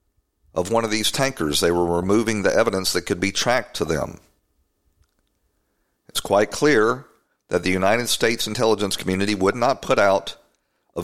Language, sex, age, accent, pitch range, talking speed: English, male, 50-69, American, 85-115 Hz, 165 wpm